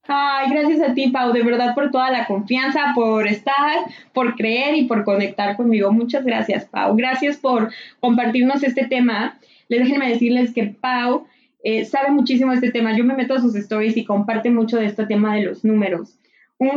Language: Spanish